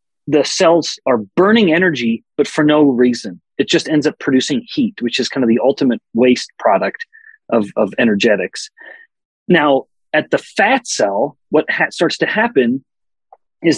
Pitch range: 135-225 Hz